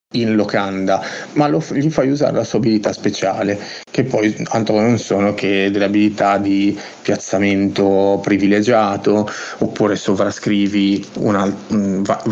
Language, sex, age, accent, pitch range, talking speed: Italian, male, 30-49, native, 100-115 Hz, 130 wpm